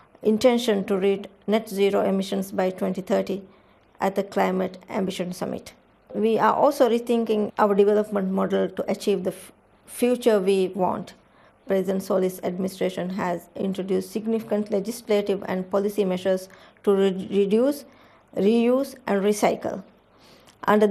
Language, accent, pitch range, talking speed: English, Indian, 190-215 Hz, 125 wpm